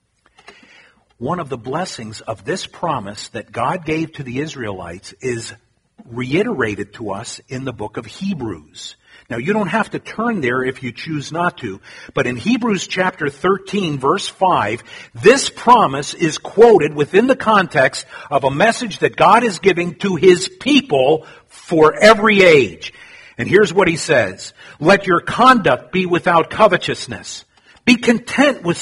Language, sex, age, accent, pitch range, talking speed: English, male, 50-69, American, 130-215 Hz, 155 wpm